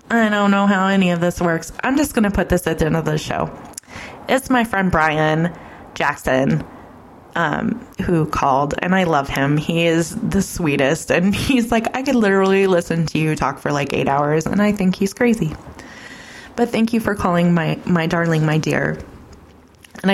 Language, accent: English, American